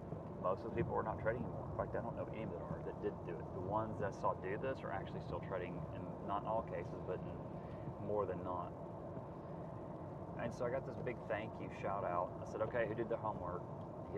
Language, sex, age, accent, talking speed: English, male, 30-49, American, 250 wpm